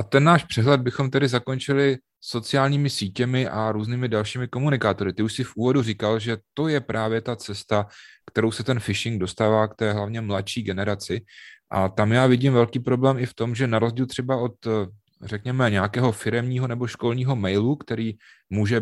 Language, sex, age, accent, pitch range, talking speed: Czech, male, 30-49, native, 100-120 Hz, 180 wpm